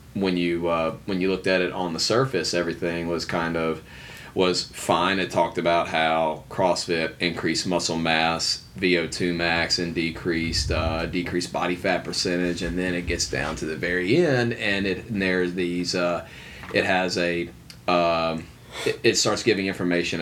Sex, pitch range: male, 85-95 Hz